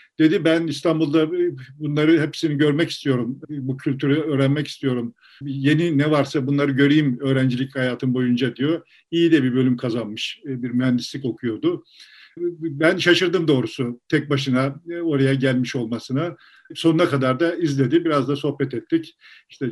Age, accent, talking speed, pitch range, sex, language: 50-69, native, 135 wpm, 130-165 Hz, male, Turkish